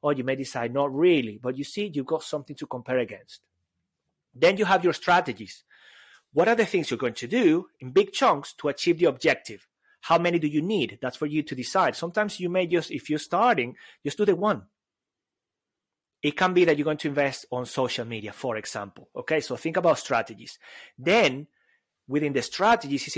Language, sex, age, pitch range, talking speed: English, male, 30-49, 130-180 Hz, 205 wpm